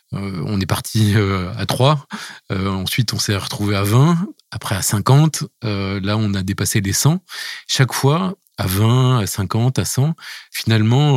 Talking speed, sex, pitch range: 175 wpm, male, 95-120 Hz